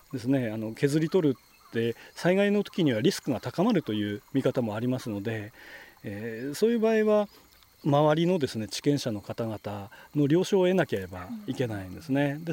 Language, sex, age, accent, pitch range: Japanese, male, 40-59, native, 130-200 Hz